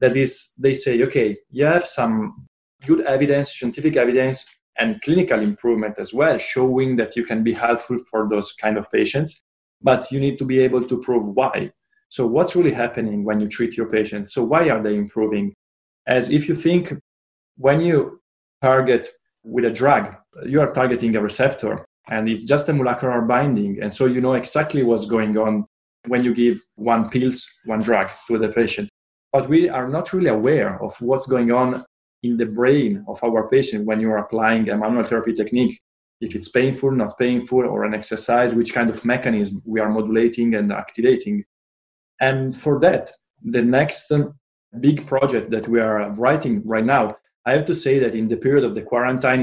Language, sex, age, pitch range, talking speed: English, male, 20-39, 110-135 Hz, 190 wpm